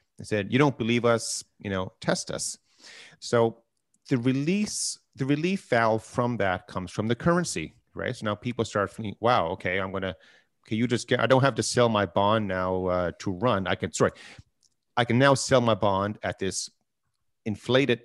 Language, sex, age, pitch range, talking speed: English, male, 30-49, 95-120 Hz, 195 wpm